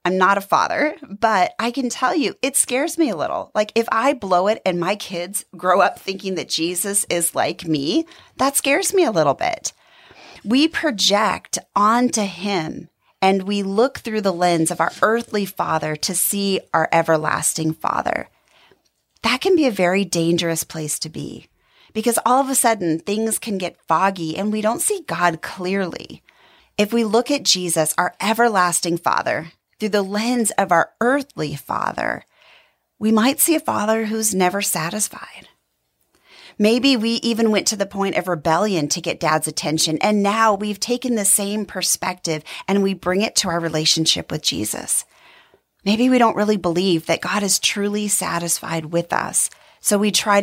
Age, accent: 30-49, American